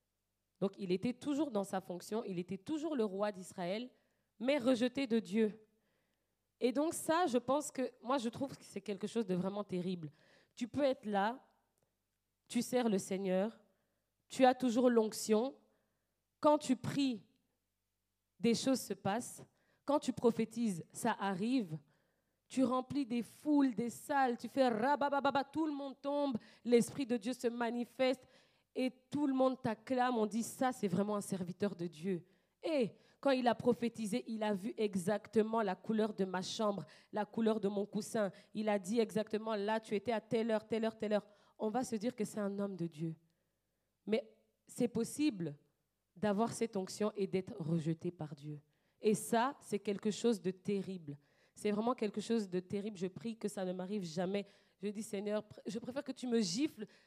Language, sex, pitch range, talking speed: French, female, 195-245 Hz, 185 wpm